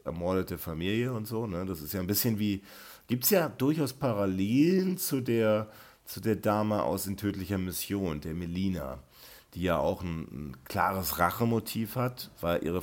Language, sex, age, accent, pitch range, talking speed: German, male, 40-59, German, 85-100 Hz, 175 wpm